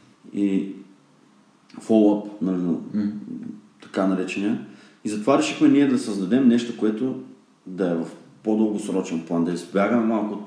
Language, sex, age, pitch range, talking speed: Bulgarian, male, 30-49, 95-115 Hz, 120 wpm